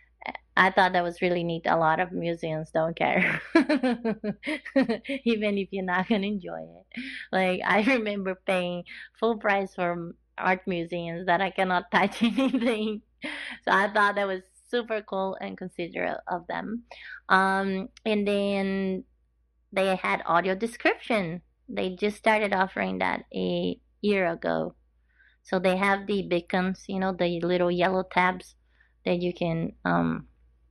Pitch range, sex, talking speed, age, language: 170-200 Hz, female, 145 wpm, 30-49, English